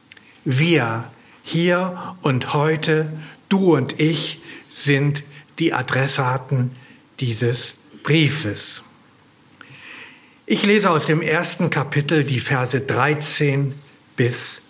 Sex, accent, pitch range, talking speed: male, German, 125-165 Hz, 90 wpm